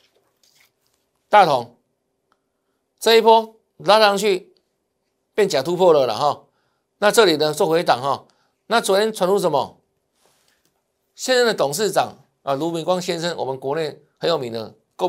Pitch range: 140-200 Hz